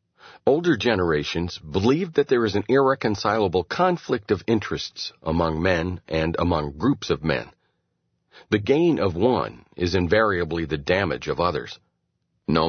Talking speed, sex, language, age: 135 wpm, male, English, 40-59